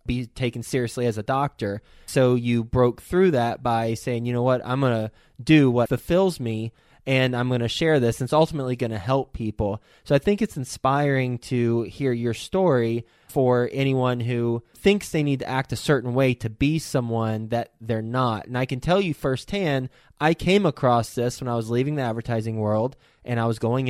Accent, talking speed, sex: American, 205 wpm, male